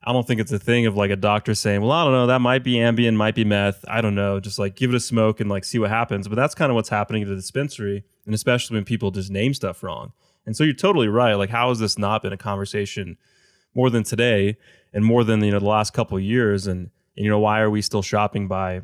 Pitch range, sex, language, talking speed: 100-115 Hz, male, English, 285 wpm